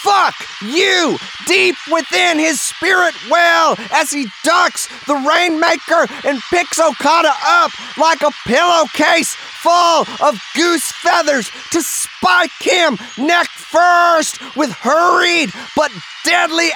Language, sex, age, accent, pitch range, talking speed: English, male, 30-49, American, 290-335 Hz, 115 wpm